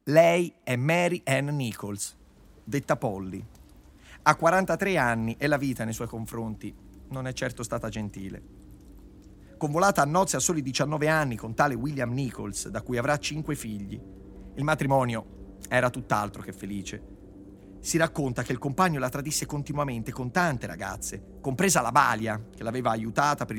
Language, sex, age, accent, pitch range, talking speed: Italian, male, 30-49, native, 100-140 Hz, 155 wpm